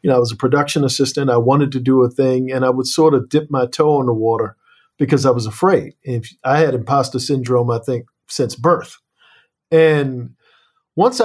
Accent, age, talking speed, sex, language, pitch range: American, 50-69, 205 wpm, male, English, 125-155 Hz